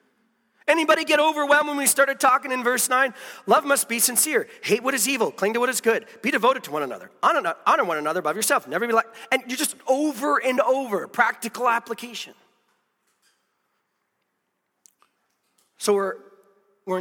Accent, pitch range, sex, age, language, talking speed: American, 215-280 Hz, male, 40-59, English, 165 wpm